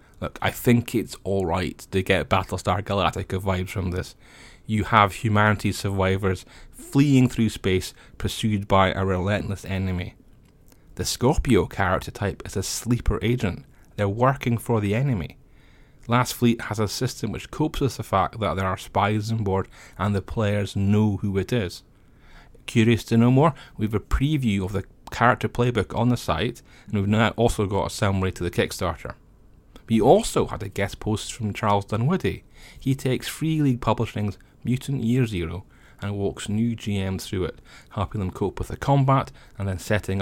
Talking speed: 175 wpm